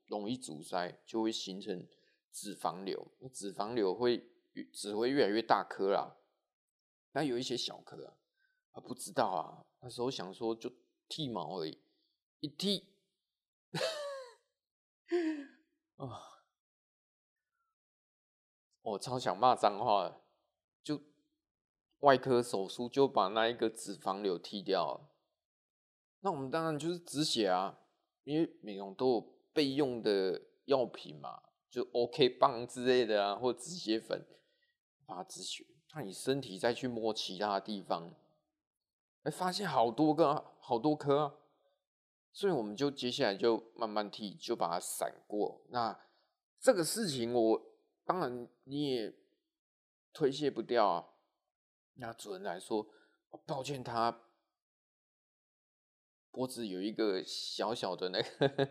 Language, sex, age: Chinese, male, 20-39